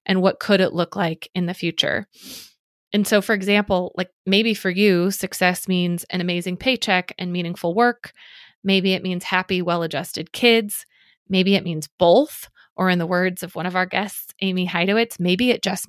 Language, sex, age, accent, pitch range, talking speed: English, female, 20-39, American, 175-200 Hz, 185 wpm